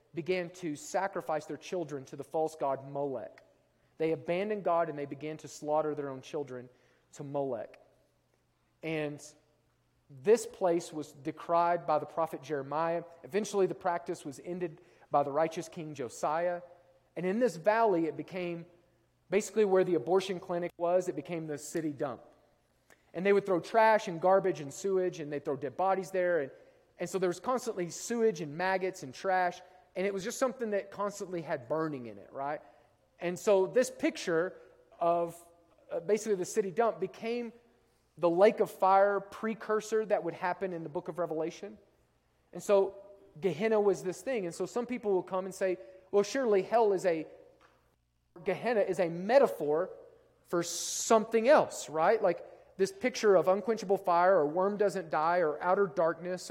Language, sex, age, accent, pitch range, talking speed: English, male, 40-59, American, 160-200 Hz, 170 wpm